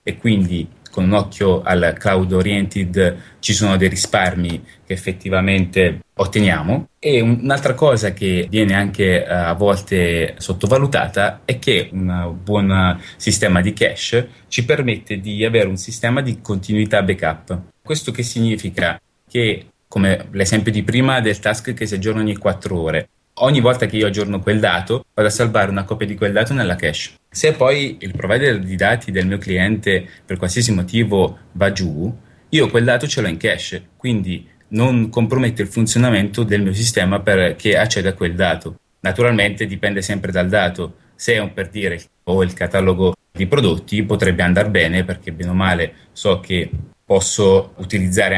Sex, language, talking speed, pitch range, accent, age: male, Italian, 165 wpm, 90-110 Hz, native, 30-49